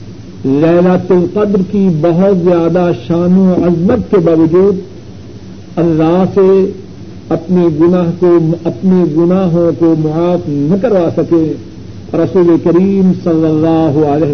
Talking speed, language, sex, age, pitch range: 110 wpm, Urdu, male, 60-79, 145-185 Hz